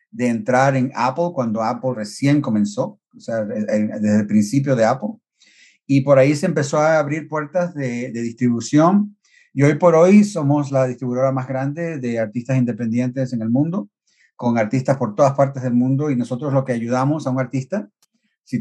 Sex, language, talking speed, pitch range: male, English, 185 wpm, 120-150 Hz